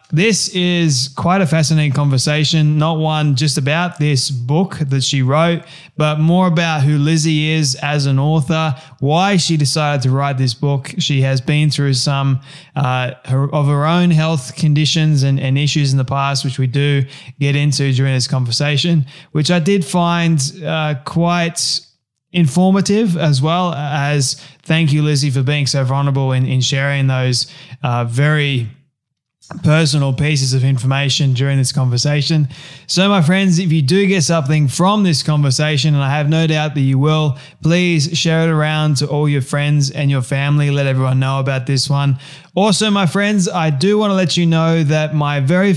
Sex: male